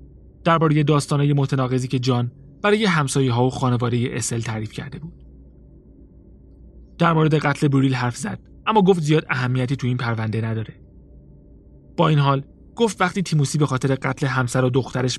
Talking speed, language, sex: 160 wpm, Persian, male